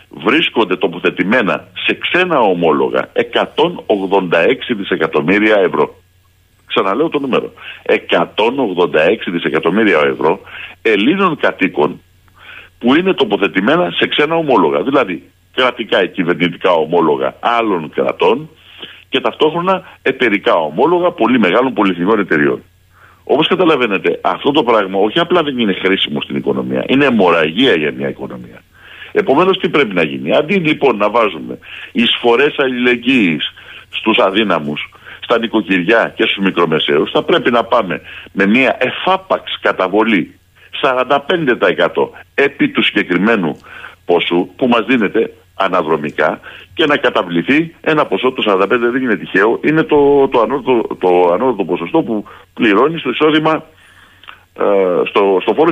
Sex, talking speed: male, 120 wpm